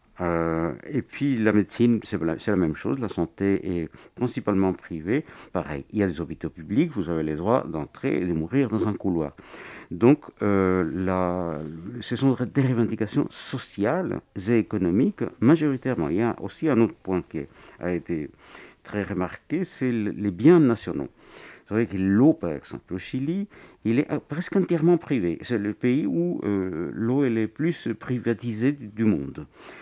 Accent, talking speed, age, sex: French, 175 wpm, 60-79, male